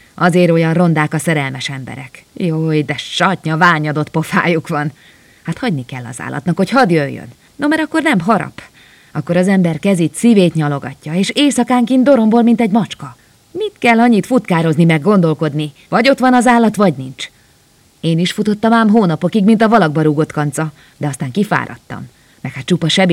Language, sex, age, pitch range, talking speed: Hungarian, female, 30-49, 150-180 Hz, 175 wpm